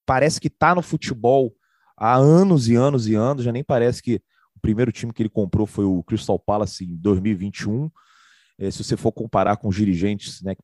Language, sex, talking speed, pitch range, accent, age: Portuguese, male, 205 wpm, 110-150 Hz, Brazilian, 30-49